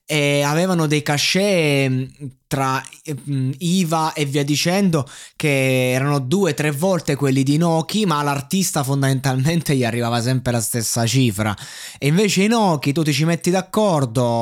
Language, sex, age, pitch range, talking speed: Italian, male, 20-39, 125-160 Hz, 140 wpm